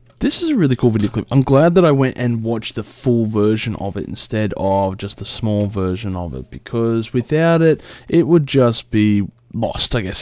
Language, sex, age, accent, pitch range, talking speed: English, male, 20-39, Australian, 100-125 Hz, 215 wpm